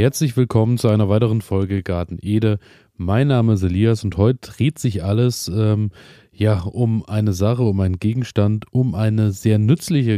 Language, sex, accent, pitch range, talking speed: German, male, German, 100-125 Hz, 170 wpm